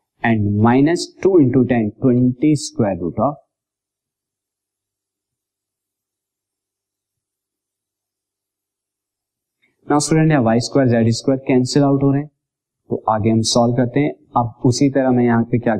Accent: native